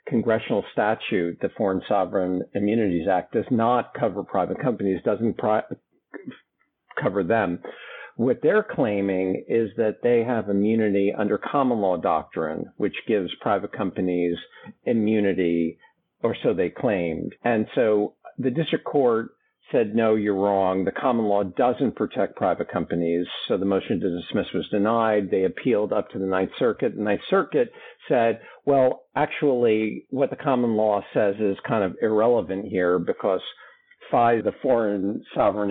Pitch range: 95-115 Hz